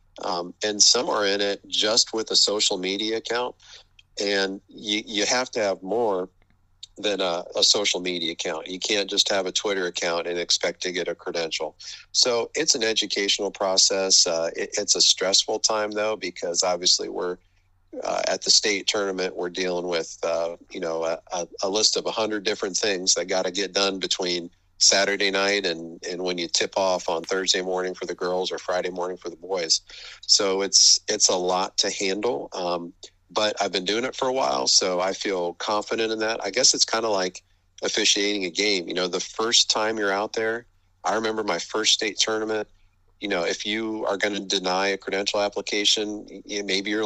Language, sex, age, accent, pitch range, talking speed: English, male, 40-59, American, 90-105 Hz, 200 wpm